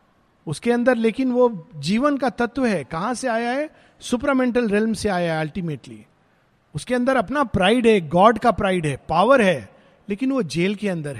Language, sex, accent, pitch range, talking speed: Hindi, male, native, 150-205 Hz, 170 wpm